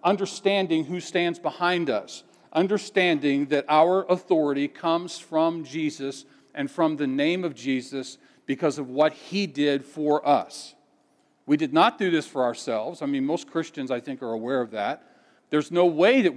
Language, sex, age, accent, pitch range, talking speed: English, male, 50-69, American, 140-180 Hz, 170 wpm